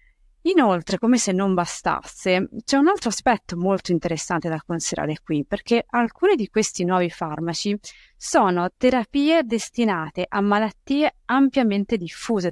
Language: Italian